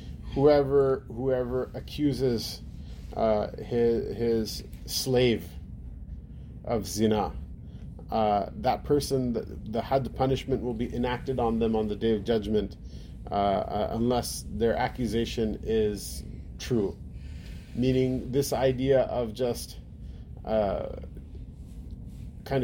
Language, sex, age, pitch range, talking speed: English, male, 30-49, 105-130 Hz, 110 wpm